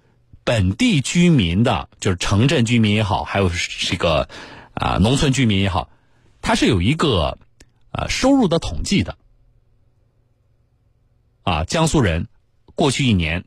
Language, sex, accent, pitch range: Chinese, male, native, 100-125 Hz